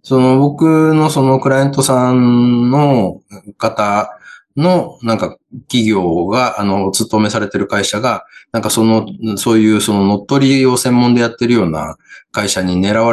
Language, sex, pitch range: Japanese, male, 90-120 Hz